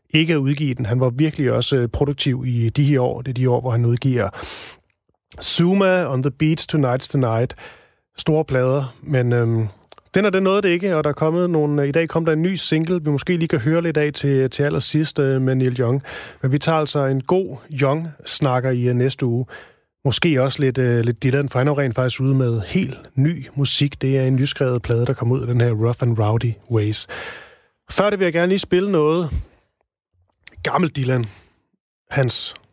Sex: male